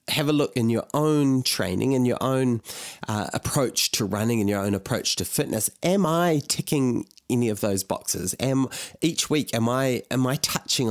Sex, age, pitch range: male, 30-49, 105-135 Hz